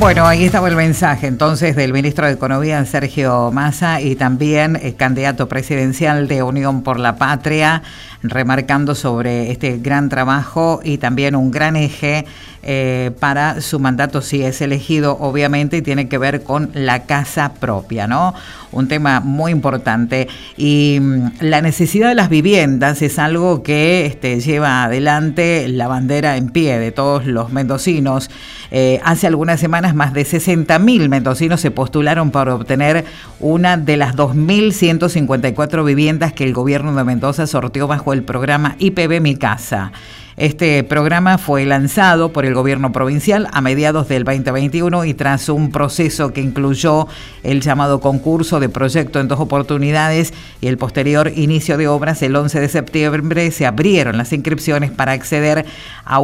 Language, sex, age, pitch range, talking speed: Spanish, female, 50-69, 135-155 Hz, 155 wpm